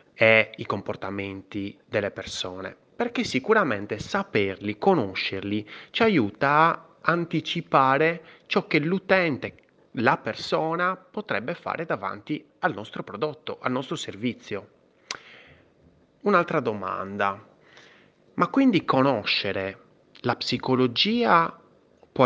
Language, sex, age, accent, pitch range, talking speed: Italian, male, 30-49, native, 105-170 Hz, 95 wpm